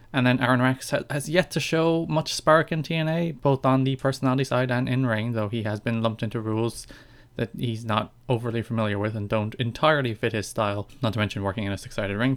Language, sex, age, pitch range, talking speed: English, male, 20-39, 110-135 Hz, 230 wpm